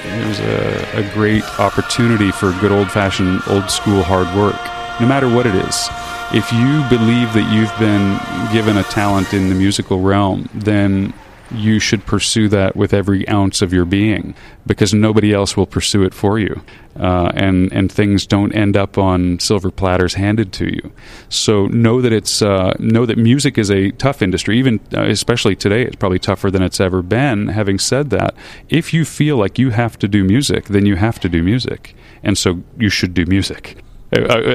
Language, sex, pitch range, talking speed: English, male, 95-115 Hz, 190 wpm